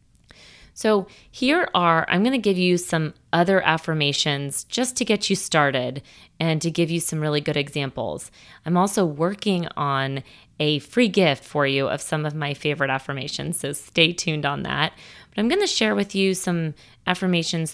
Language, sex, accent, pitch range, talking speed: English, female, American, 145-185 Hz, 180 wpm